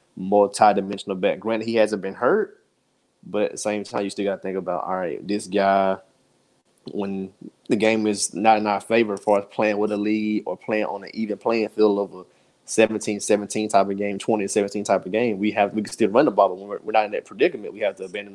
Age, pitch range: 20-39, 100-115 Hz